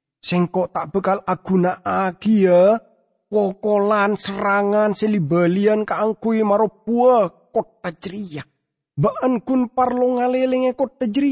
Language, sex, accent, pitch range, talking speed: English, male, Indonesian, 180-250 Hz, 95 wpm